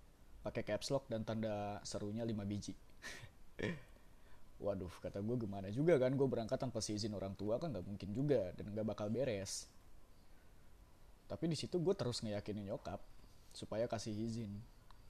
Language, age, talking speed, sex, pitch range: Indonesian, 20-39, 155 wpm, male, 100-120 Hz